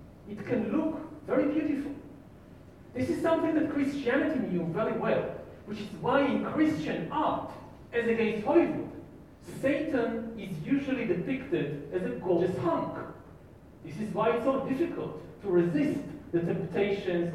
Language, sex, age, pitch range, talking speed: Polish, male, 40-59, 195-285 Hz, 140 wpm